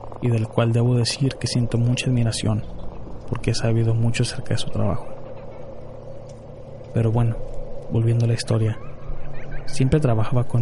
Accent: Mexican